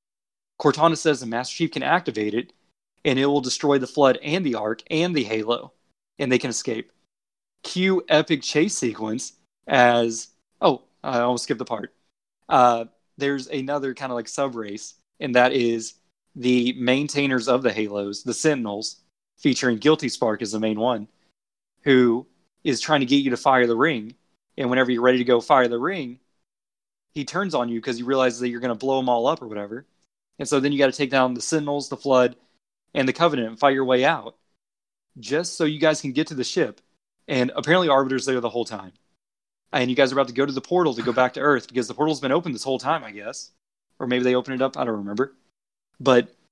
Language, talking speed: English, 215 wpm